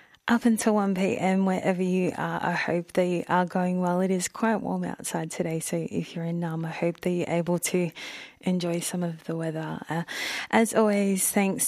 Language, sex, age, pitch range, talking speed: English, female, 20-39, 175-195 Hz, 195 wpm